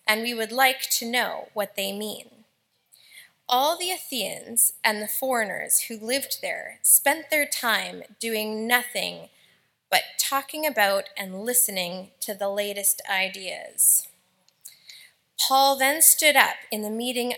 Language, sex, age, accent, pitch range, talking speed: English, female, 20-39, American, 210-275 Hz, 135 wpm